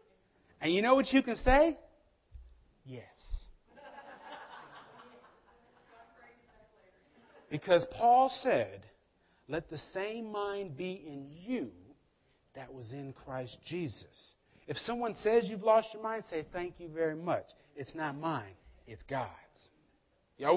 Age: 40-59